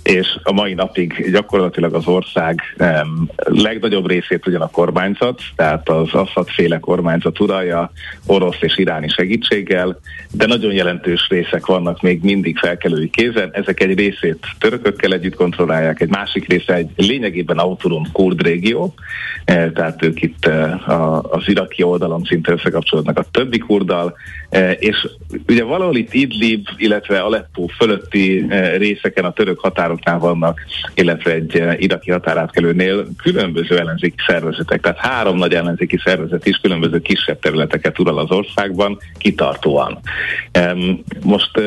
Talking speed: 135 wpm